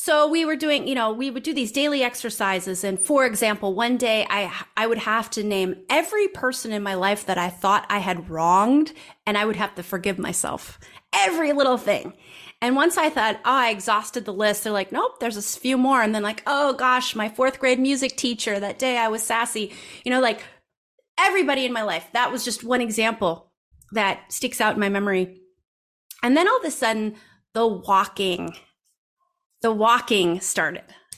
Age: 30-49